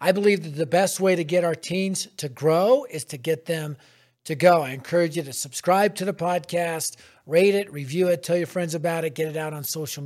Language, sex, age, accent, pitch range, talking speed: English, male, 50-69, American, 150-190 Hz, 240 wpm